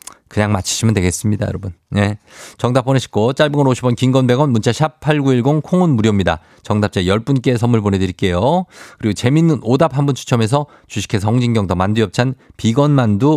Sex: male